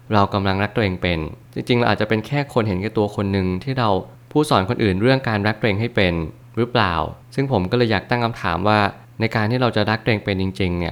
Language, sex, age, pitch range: Thai, male, 20-39, 95-120 Hz